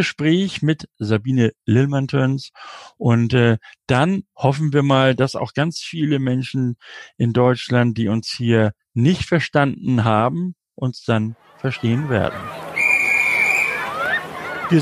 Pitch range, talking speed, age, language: 110-150 Hz, 115 wpm, 60-79, German